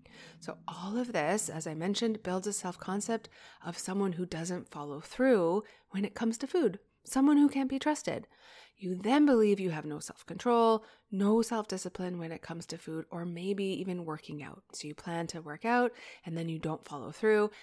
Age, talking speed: 30-49, 195 wpm